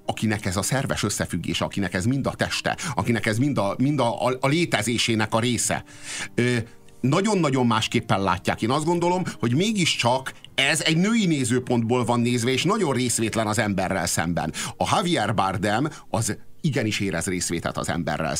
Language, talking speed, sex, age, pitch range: Hungarian, 165 wpm, male, 50-69, 105-135 Hz